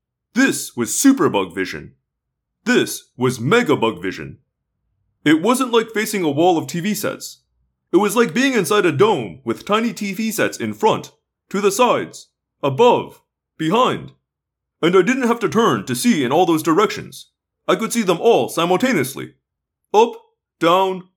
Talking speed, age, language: 160 wpm, 30-49, English